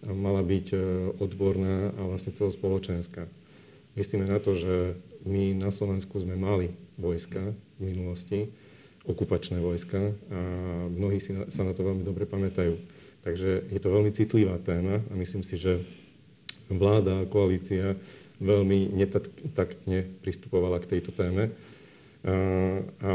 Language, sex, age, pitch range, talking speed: Slovak, male, 40-59, 90-100 Hz, 125 wpm